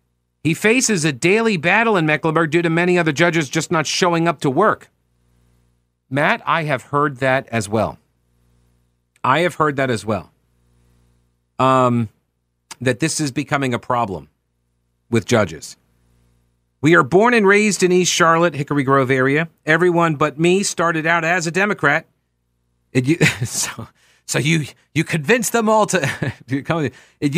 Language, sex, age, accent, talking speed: English, male, 40-59, American, 150 wpm